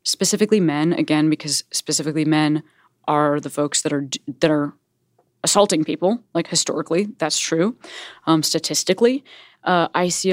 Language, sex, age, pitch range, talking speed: English, female, 20-39, 155-205 Hz, 140 wpm